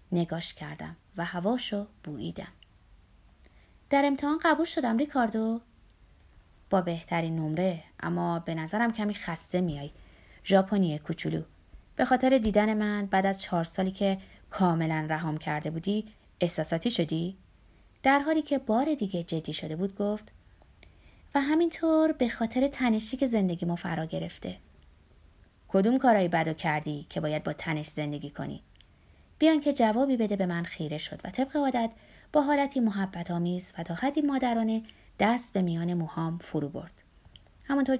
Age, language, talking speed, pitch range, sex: 20-39, Persian, 140 wpm, 155-240 Hz, female